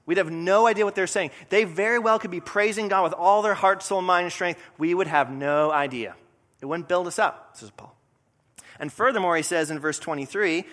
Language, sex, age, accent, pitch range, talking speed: English, male, 30-49, American, 135-185 Hz, 230 wpm